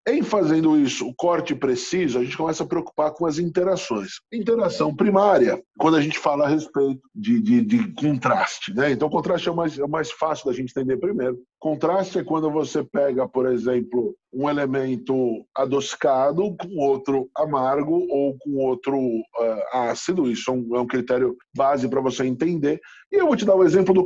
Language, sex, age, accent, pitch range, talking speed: Portuguese, male, 10-29, Brazilian, 135-190 Hz, 175 wpm